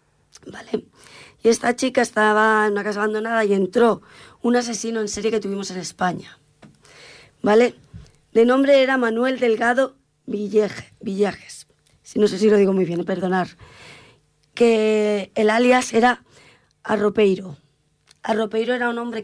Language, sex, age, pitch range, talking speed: Italian, female, 20-39, 195-230 Hz, 140 wpm